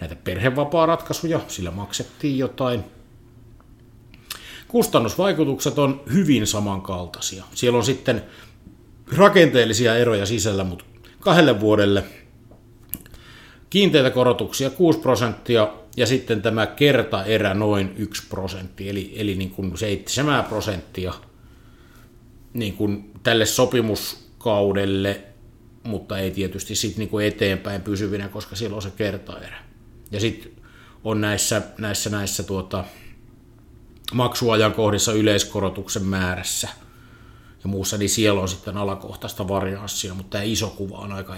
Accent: native